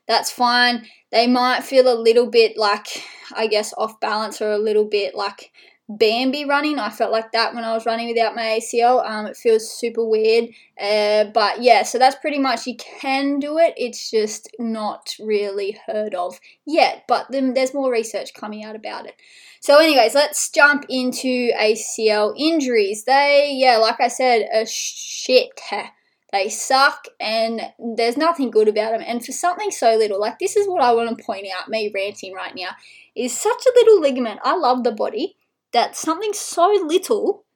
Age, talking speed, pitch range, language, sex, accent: 20-39, 185 wpm, 215-280 Hz, English, female, Australian